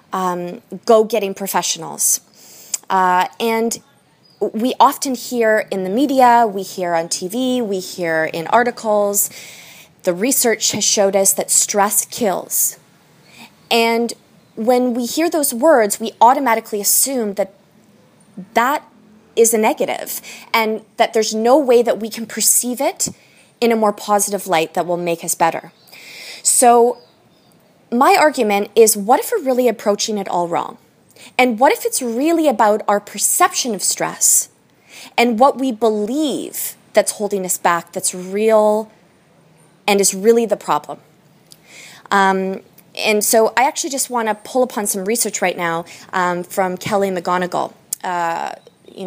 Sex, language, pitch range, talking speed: female, English, 185-235 Hz, 145 wpm